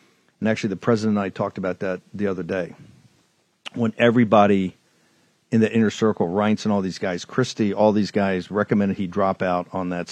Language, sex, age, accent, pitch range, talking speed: English, male, 50-69, American, 100-125 Hz, 195 wpm